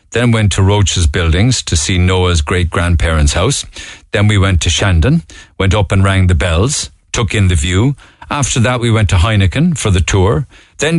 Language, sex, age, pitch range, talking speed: English, male, 50-69, 85-120 Hz, 190 wpm